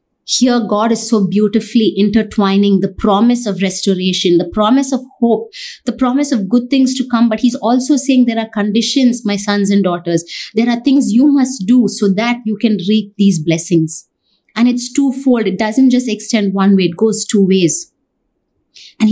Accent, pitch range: Indian, 195-235 Hz